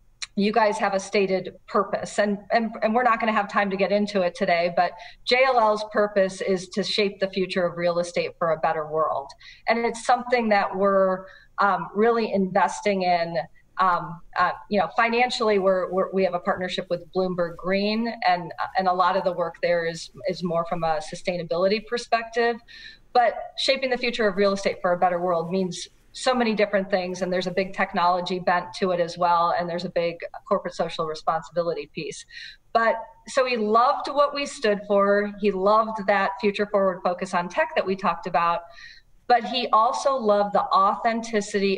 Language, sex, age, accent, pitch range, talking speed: English, female, 40-59, American, 180-215 Hz, 190 wpm